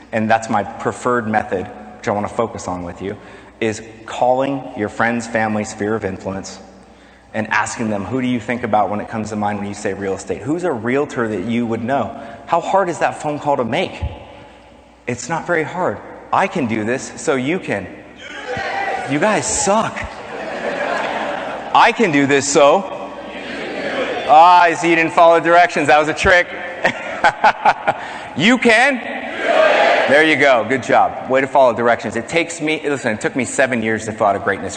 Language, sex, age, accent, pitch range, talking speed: English, male, 30-49, American, 105-140 Hz, 190 wpm